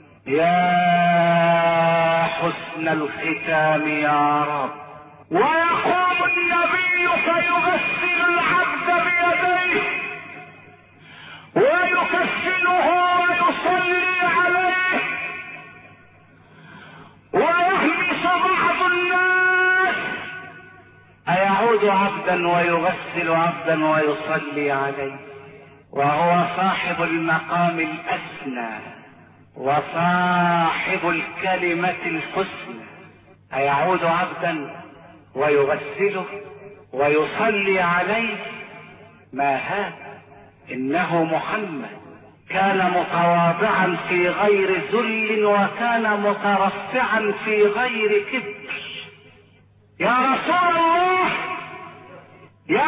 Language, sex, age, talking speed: Arabic, male, 50-69, 60 wpm